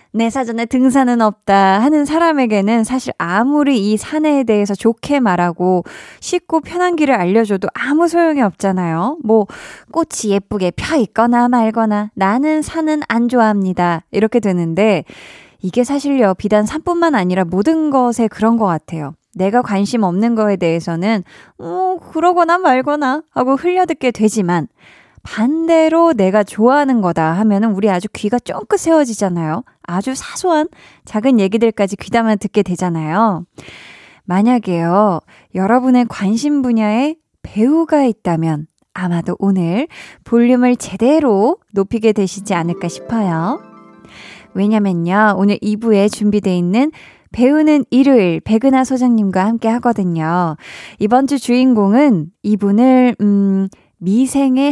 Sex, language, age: female, Korean, 20-39